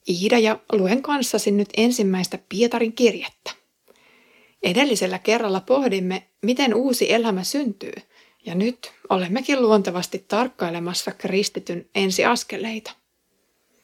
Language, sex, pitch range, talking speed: Finnish, female, 190-240 Hz, 95 wpm